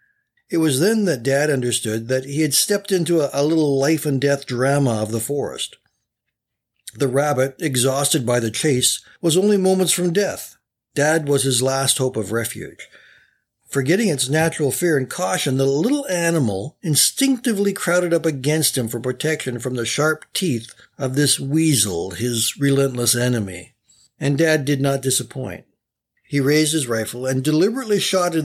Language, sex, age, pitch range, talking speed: English, male, 60-79, 120-155 Hz, 160 wpm